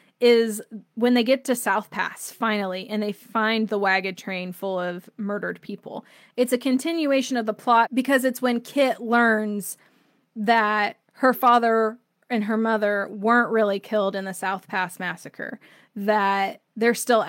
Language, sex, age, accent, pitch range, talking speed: English, female, 20-39, American, 200-235 Hz, 160 wpm